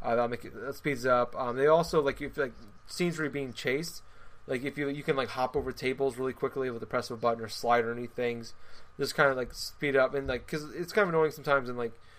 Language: English